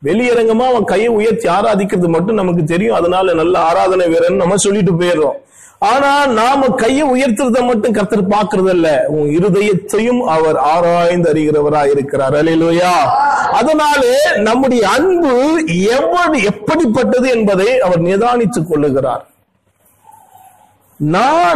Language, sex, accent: Tamil, male, native